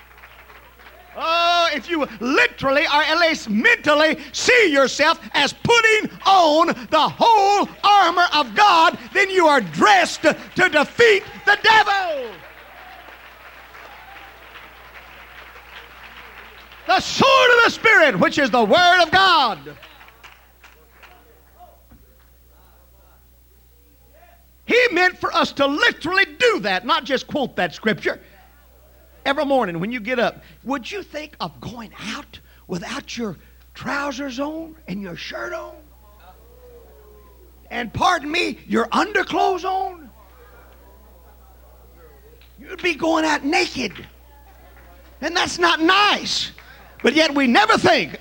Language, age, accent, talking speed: English, 50-69, American, 110 wpm